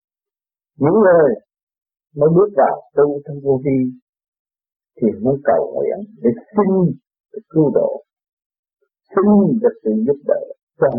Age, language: 50-69, Vietnamese